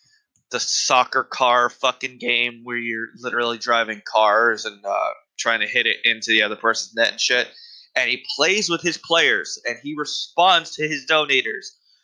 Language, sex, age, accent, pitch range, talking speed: English, male, 20-39, American, 130-190 Hz, 175 wpm